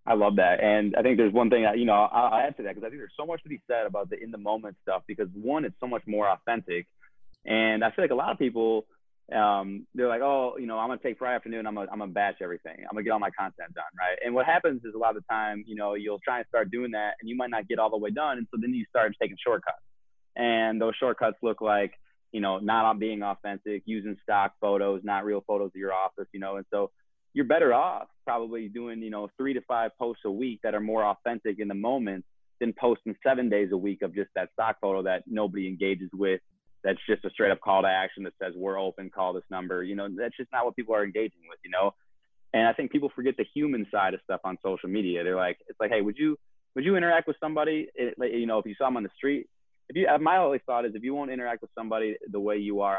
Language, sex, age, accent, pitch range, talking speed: English, male, 20-39, American, 100-120 Hz, 275 wpm